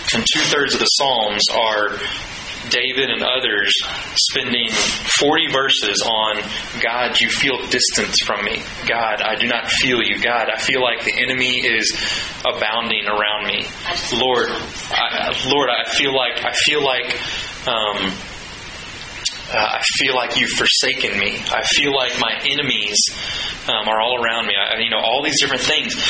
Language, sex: English, male